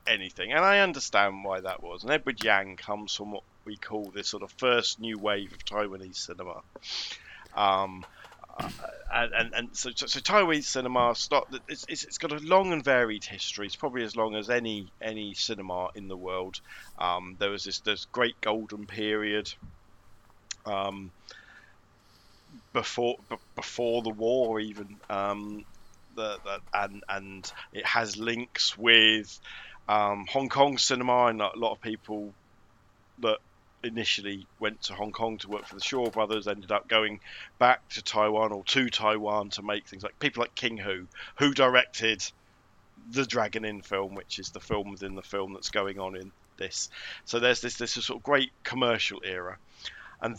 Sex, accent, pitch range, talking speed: male, British, 100-120 Hz, 175 wpm